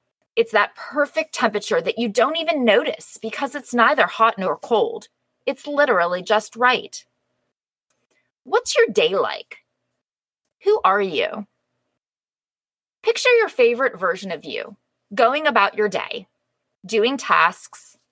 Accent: American